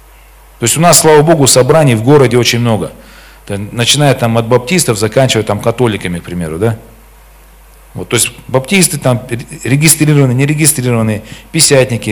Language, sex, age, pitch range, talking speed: Russian, male, 40-59, 115-140 Hz, 120 wpm